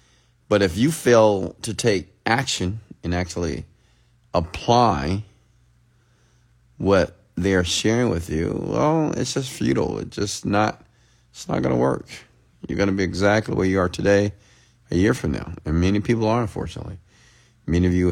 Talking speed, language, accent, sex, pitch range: 155 wpm, English, American, male, 90-115 Hz